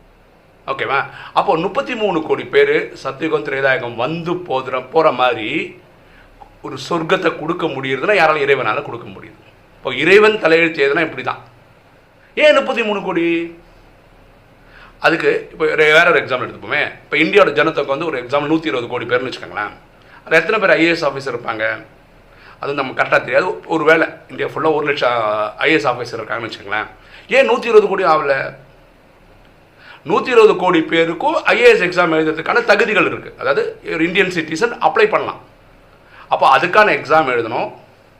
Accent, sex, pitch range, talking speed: native, male, 140-225 Hz, 40 wpm